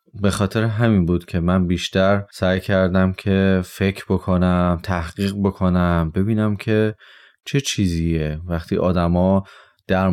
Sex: male